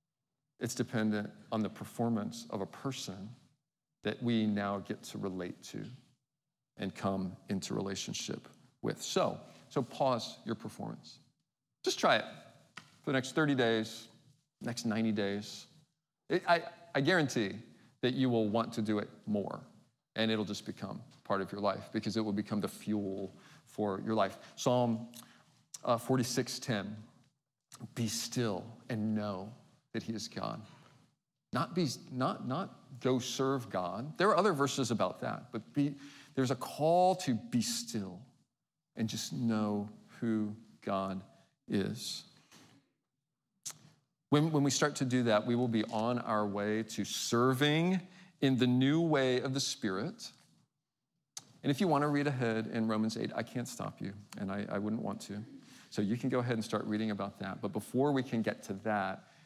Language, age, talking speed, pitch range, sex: English, 40-59, 160 wpm, 110-140 Hz, male